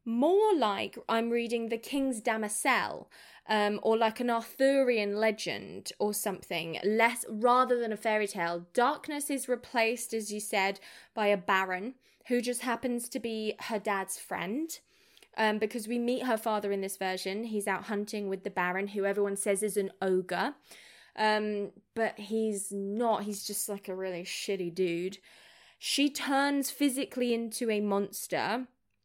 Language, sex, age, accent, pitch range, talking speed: English, female, 20-39, British, 195-235 Hz, 155 wpm